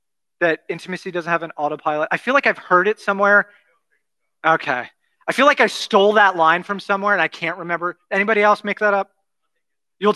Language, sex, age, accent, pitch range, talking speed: English, male, 30-49, American, 155-200 Hz, 195 wpm